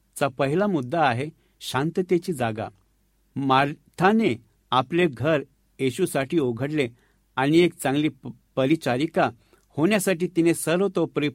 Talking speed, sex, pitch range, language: 95 wpm, male, 125-175 Hz, Marathi